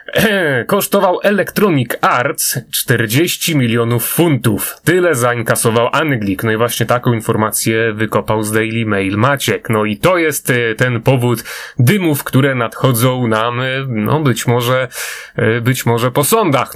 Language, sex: Polish, male